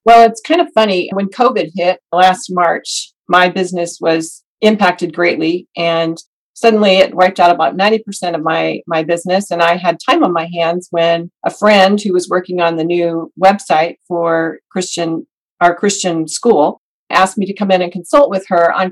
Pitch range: 175-205 Hz